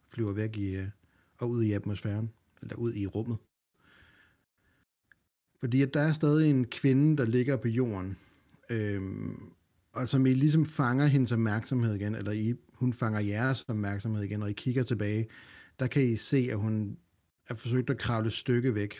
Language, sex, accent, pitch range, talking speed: Danish, male, native, 105-125 Hz, 175 wpm